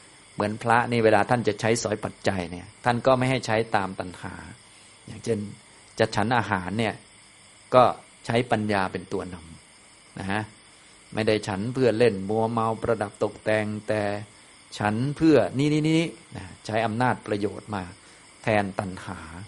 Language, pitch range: Thai, 100-120 Hz